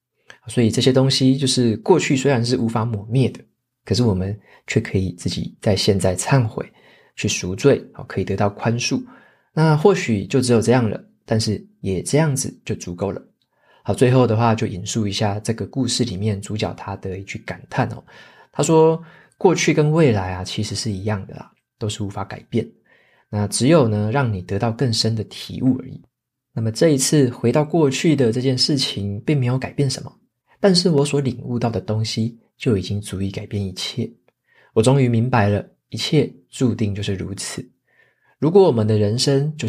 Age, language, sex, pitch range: 20-39, Chinese, male, 105-130 Hz